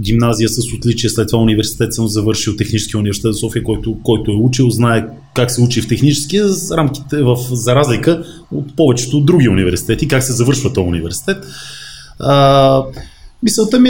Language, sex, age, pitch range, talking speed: Bulgarian, male, 30-49, 110-155 Hz, 155 wpm